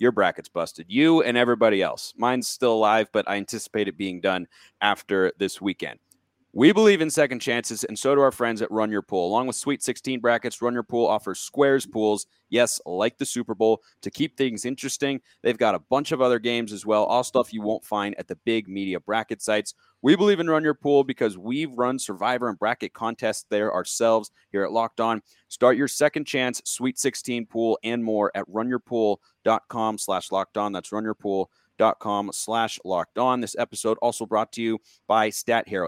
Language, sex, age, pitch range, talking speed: English, male, 30-49, 110-130 Hz, 205 wpm